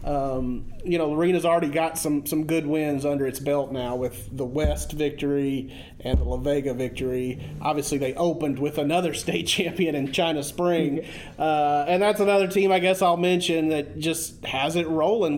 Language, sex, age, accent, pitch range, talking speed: English, male, 30-49, American, 140-185 Hz, 185 wpm